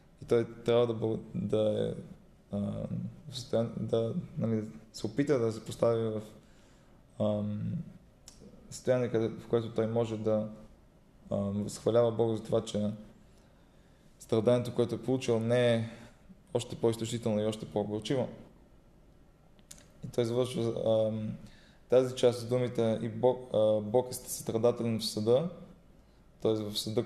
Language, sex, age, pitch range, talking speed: Bulgarian, male, 20-39, 110-120 Hz, 125 wpm